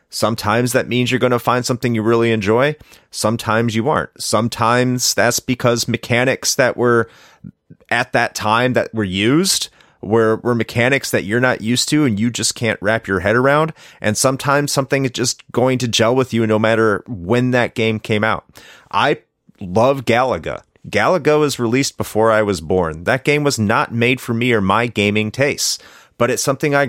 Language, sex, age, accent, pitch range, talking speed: English, male, 30-49, American, 110-130 Hz, 185 wpm